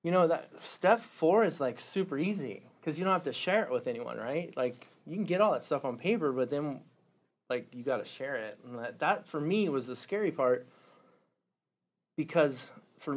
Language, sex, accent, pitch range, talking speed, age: English, male, American, 125-155 Hz, 215 wpm, 30-49